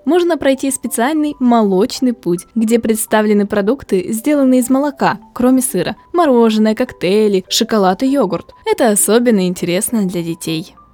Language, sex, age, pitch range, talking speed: Russian, female, 10-29, 195-265 Hz, 125 wpm